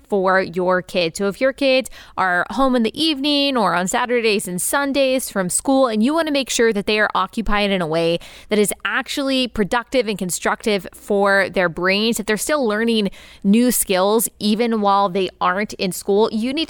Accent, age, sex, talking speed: American, 20-39, female, 200 wpm